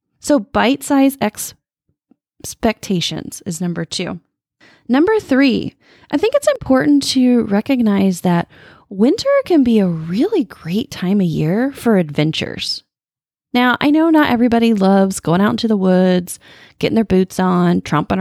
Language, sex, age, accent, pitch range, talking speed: English, female, 20-39, American, 175-275 Hz, 140 wpm